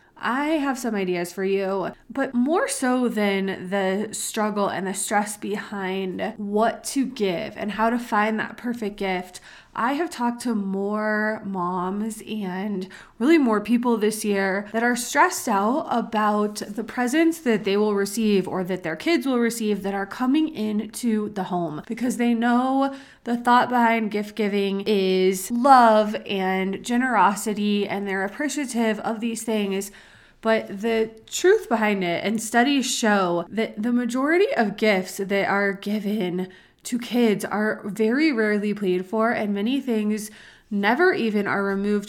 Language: English